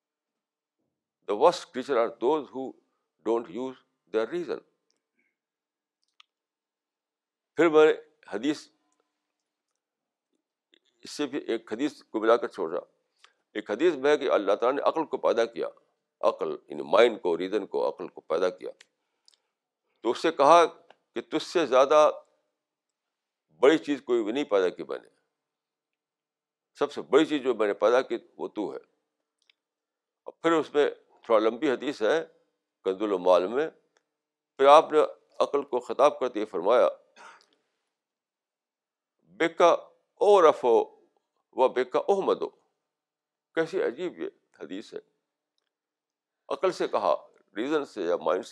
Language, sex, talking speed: Urdu, male, 125 wpm